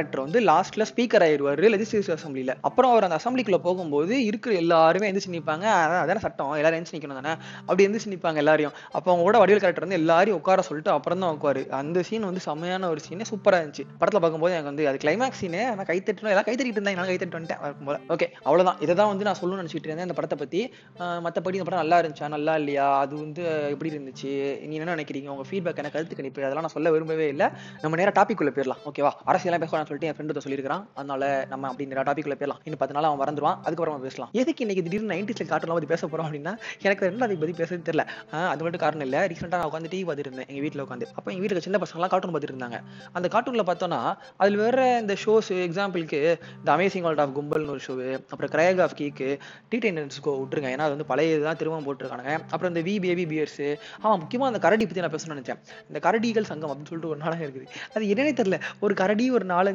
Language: Tamil